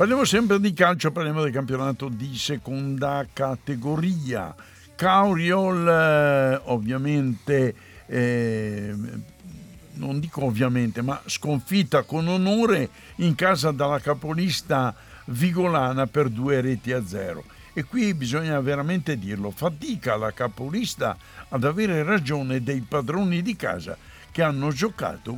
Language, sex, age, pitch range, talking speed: Italian, male, 60-79, 120-170 Hz, 115 wpm